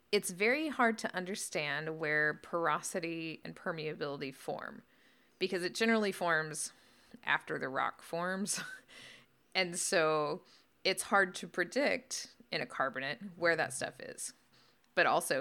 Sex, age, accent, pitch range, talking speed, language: female, 20-39, American, 160-220 Hz, 130 wpm, English